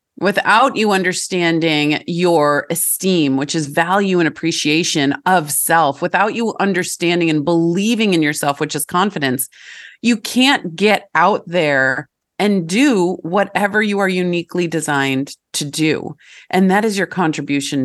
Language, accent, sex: English, American, female